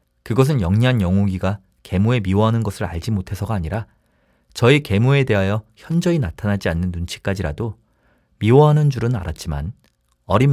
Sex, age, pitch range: male, 40-59, 95-130 Hz